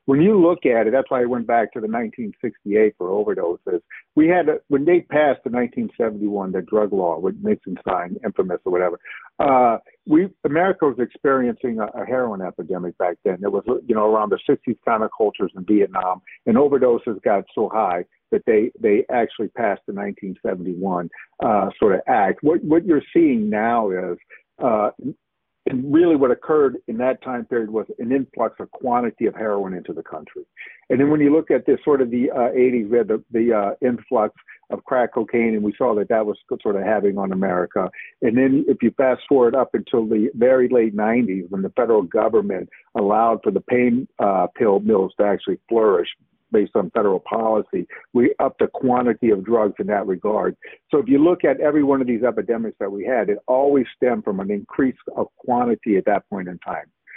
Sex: male